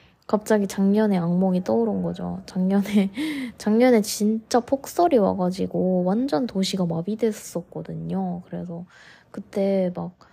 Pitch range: 180-220 Hz